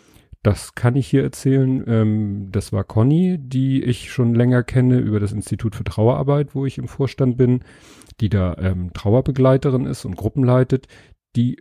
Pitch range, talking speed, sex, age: 105-125 Hz, 160 wpm, male, 40-59